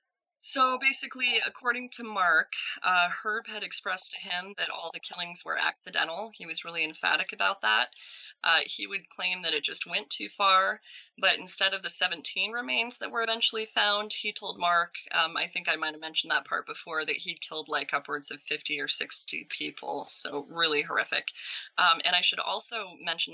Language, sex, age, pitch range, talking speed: English, female, 20-39, 155-195 Hz, 195 wpm